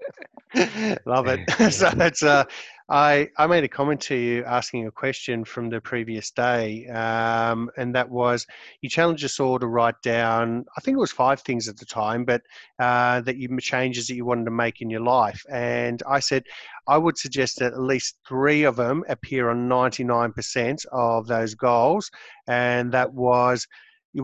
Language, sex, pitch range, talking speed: English, male, 120-145 Hz, 185 wpm